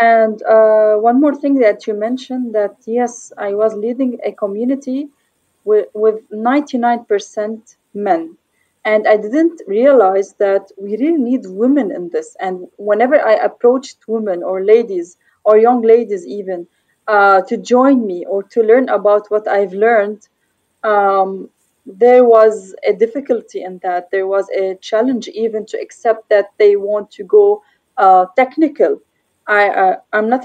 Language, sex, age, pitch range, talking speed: English, female, 20-39, 205-265 Hz, 150 wpm